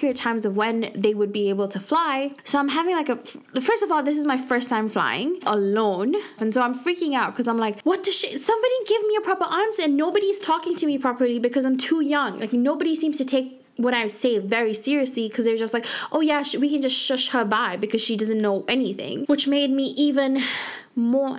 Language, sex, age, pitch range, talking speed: English, female, 10-29, 200-270 Hz, 230 wpm